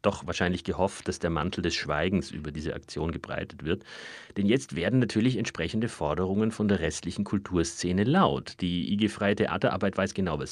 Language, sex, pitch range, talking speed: German, male, 95-115 Hz, 170 wpm